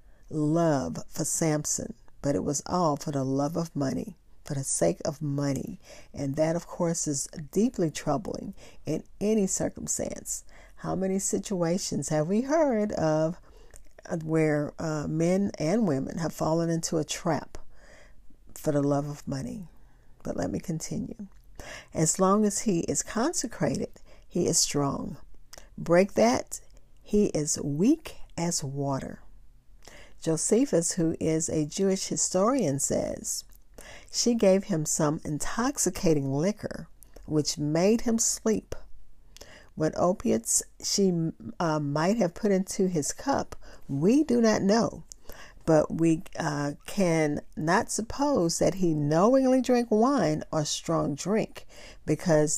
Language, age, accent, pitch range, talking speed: English, 50-69, American, 150-195 Hz, 130 wpm